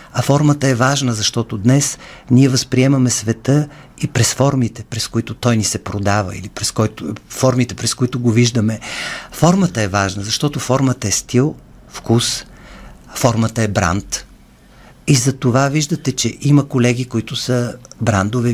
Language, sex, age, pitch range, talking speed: Bulgarian, male, 50-69, 110-130 Hz, 150 wpm